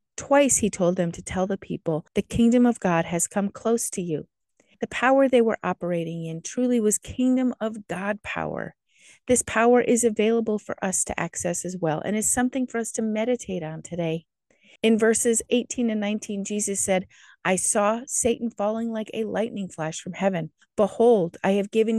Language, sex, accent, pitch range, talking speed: English, female, American, 190-240 Hz, 190 wpm